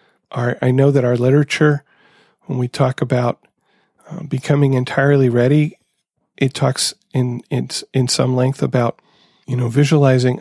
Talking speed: 145 wpm